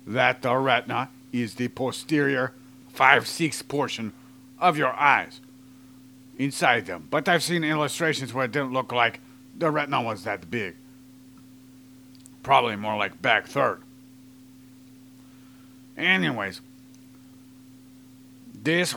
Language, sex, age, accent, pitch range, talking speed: English, male, 50-69, American, 130-140 Hz, 110 wpm